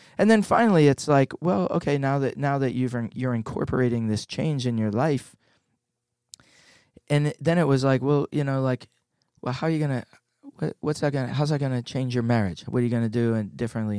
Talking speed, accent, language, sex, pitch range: 205 wpm, American, English, male, 115-145 Hz